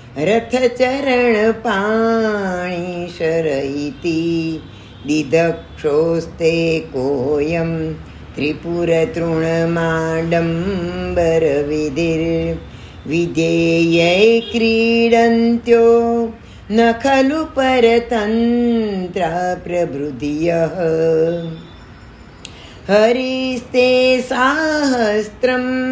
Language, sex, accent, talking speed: Gujarati, female, native, 30 wpm